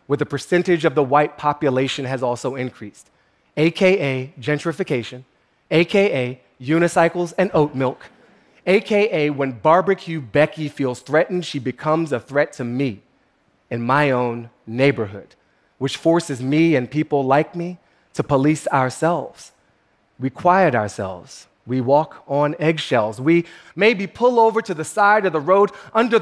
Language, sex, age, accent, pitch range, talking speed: Russian, male, 30-49, American, 130-180 Hz, 140 wpm